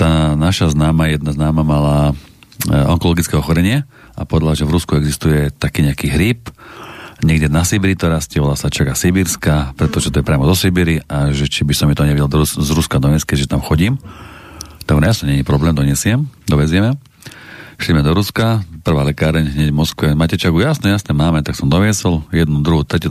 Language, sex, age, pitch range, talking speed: Slovak, male, 40-59, 75-90 Hz, 200 wpm